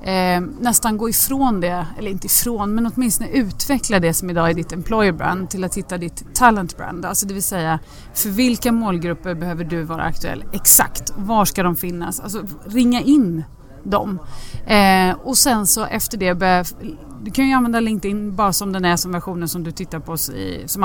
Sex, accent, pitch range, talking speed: female, native, 170-225 Hz, 195 wpm